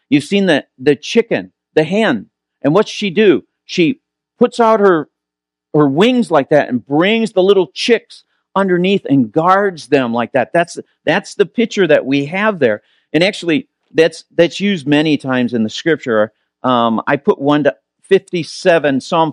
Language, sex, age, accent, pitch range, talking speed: English, male, 50-69, American, 130-175 Hz, 175 wpm